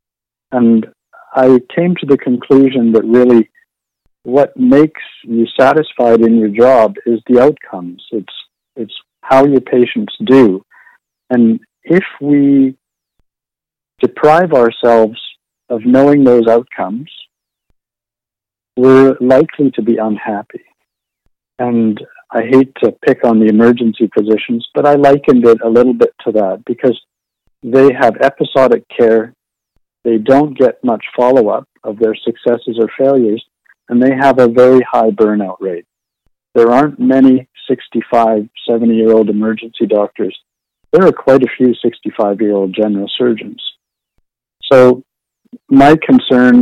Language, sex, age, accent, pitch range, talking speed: English, male, 50-69, American, 115-135 Hz, 125 wpm